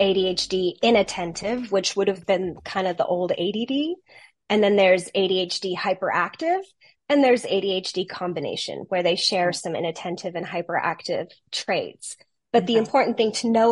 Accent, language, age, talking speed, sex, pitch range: American, English, 20-39, 150 wpm, female, 185-240 Hz